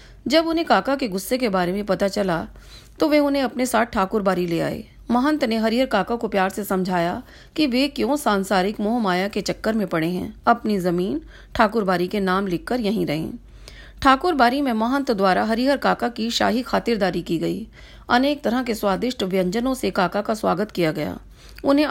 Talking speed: 185 wpm